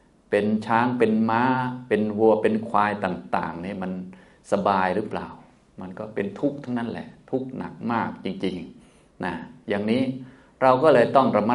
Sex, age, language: male, 20-39, Thai